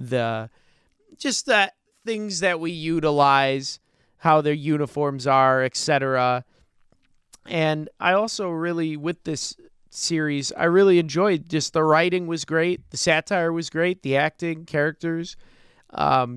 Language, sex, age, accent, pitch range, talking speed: English, male, 30-49, American, 145-180 Hz, 130 wpm